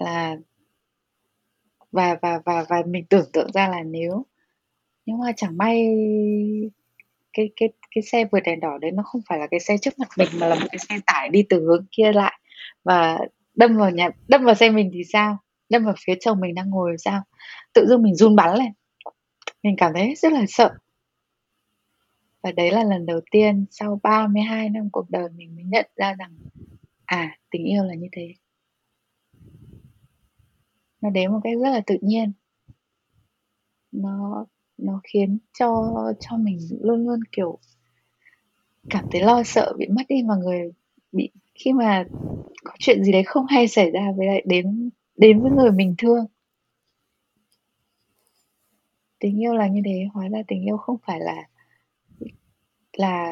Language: Vietnamese